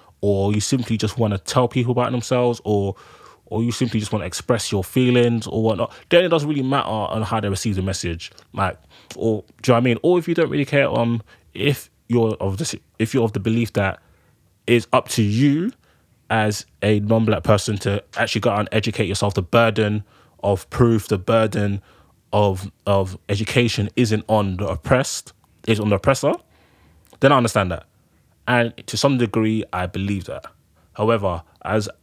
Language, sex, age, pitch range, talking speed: English, male, 20-39, 100-120 Hz, 195 wpm